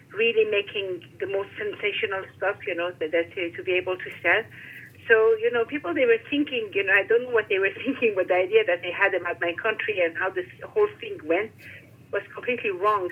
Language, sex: English, female